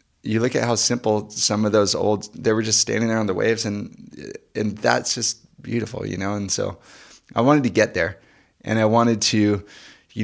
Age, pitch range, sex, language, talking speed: 20-39, 100-120 Hz, male, English, 210 wpm